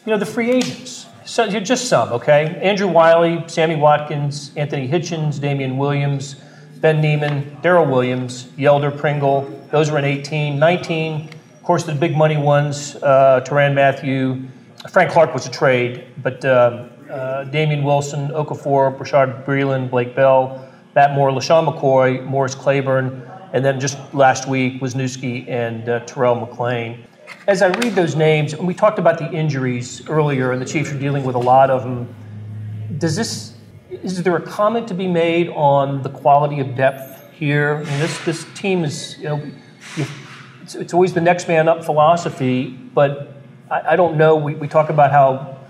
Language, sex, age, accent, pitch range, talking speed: English, male, 40-59, American, 130-155 Hz, 175 wpm